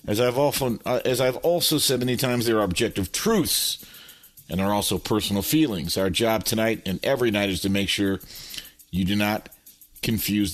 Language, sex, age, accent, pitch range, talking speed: English, male, 50-69, American, 100-130 Hz, 195 wpm